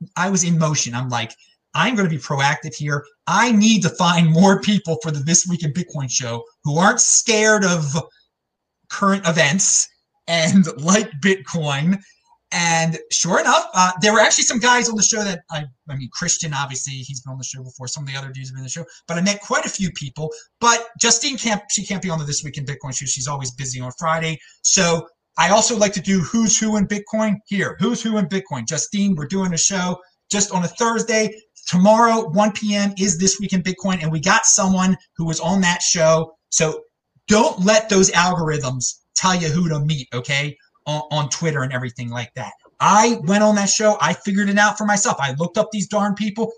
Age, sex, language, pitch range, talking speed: 30-49, male, English, 155-205 Hz, 220 wpm